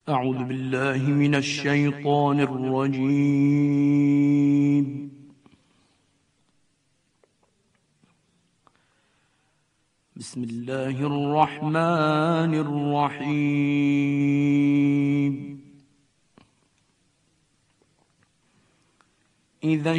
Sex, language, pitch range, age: male, Persian, 145-165 Hz, 50-69